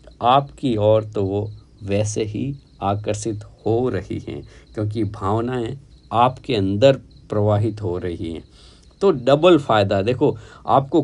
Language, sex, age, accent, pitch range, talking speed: Hindi, male, 50-69, native, 100-130 Hz, 125 wpm